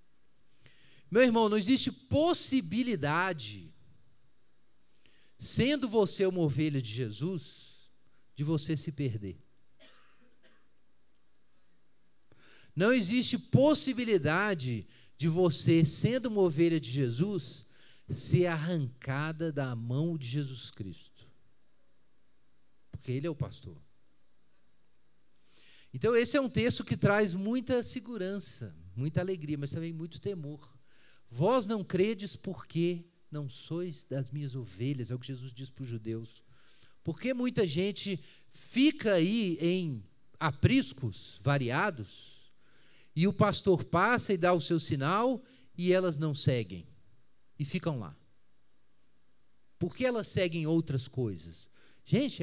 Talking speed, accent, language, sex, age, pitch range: 115 wpm, Brazilian, Portuguese, male, 40-59, 125-190 Hz